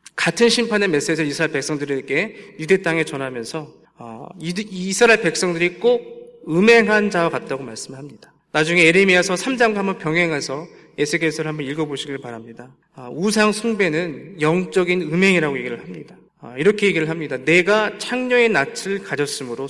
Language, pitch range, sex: Korean, 155-205 Hz, male